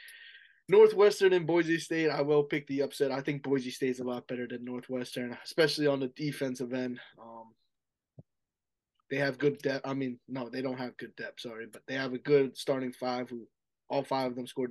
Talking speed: 205 wpm